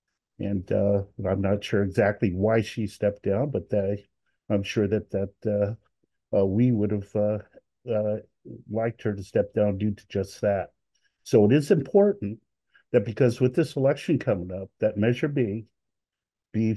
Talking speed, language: 170 wpm, English